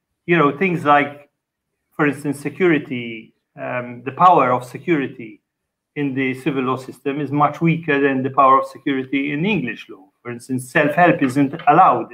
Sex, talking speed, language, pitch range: male, 165 wpm, English, 130-155 Hz